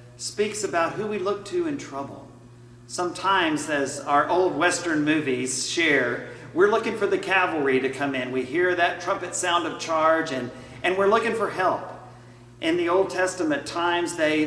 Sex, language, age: male, English, 40-59